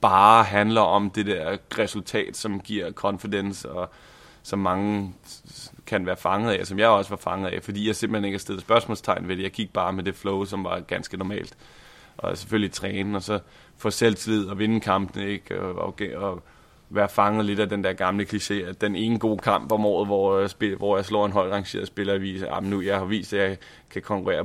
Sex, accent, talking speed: male, native, 220 wpm